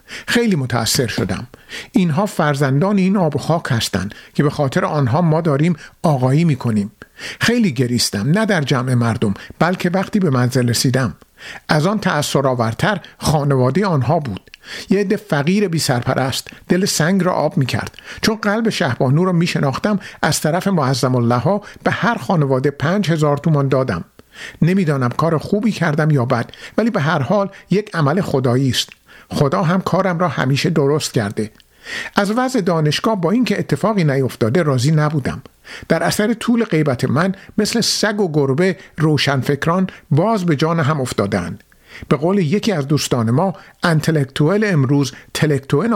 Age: 50-69